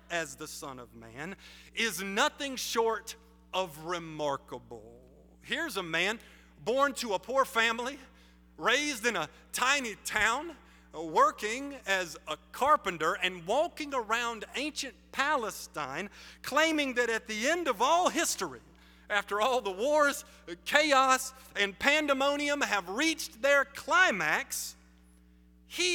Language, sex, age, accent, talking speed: English, male, 40-59, American, 120 wpm